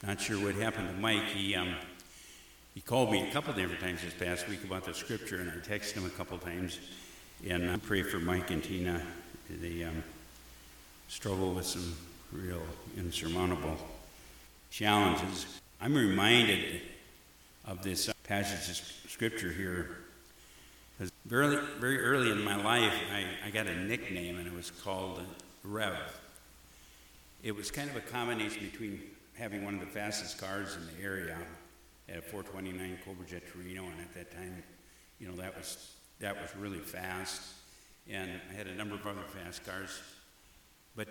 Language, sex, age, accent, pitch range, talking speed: English, male, 60-79, American, 85-100 Hz, 165 wpm